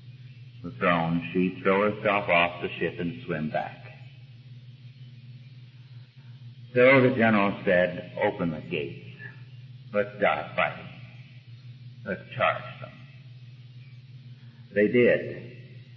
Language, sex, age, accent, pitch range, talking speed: English, male, 60-79, American, 105-125 Hz, 100 wpm